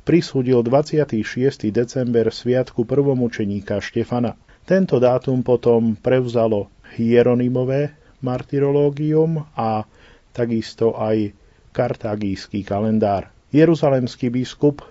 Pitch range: 110-130 Hz